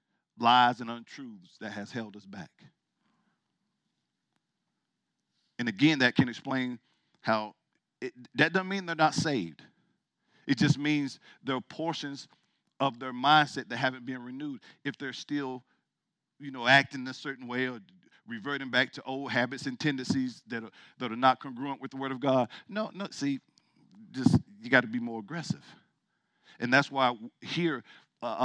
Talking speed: 160 wpm